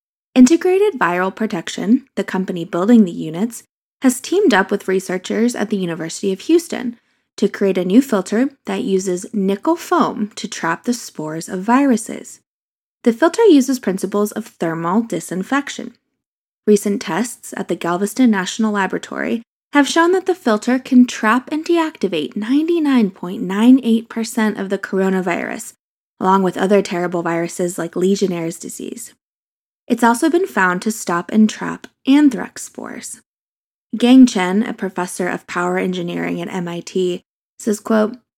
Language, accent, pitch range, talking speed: English, American, 185-245 Hz, 140 wpm